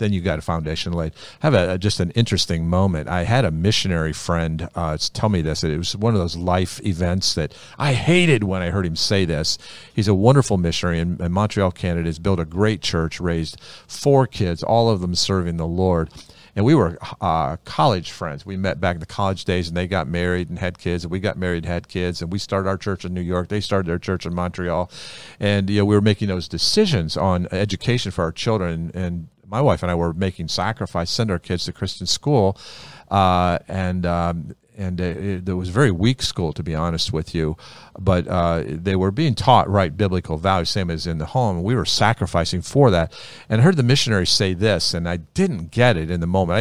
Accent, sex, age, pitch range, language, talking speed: American, male, 50-69, 85-105 Hz, English, 230 wpm